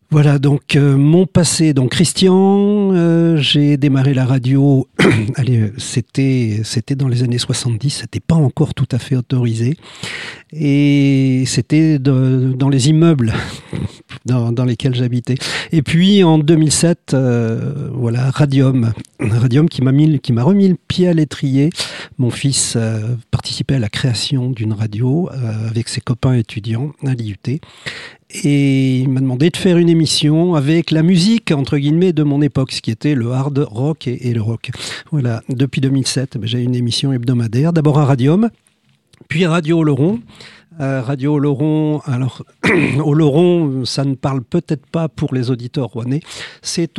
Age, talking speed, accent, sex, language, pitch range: 50-69, 160 wpm, French, male, French, 125-155 Hz